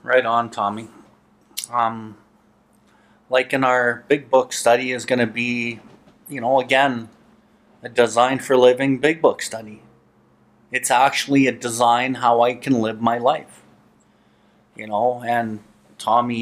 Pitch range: 115-135 Hz